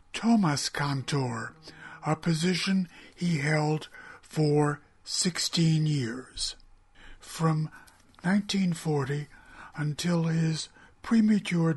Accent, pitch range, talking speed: American, 145-180 Hz, 70 wpm